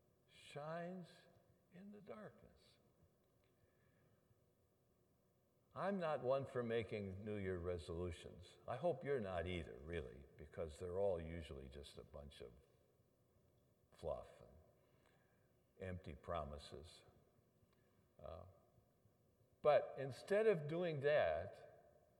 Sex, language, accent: male, English, American